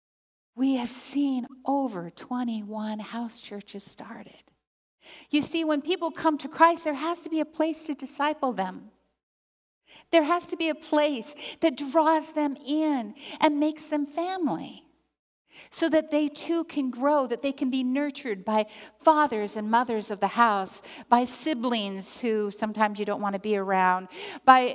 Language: English